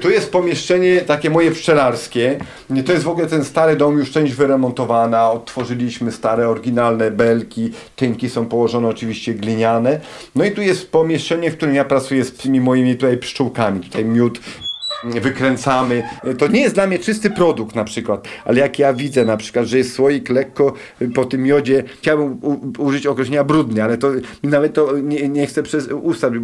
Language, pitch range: Polish, 120-155 Hz